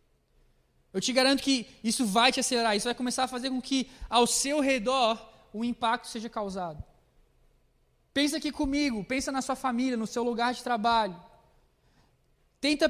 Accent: Brazilian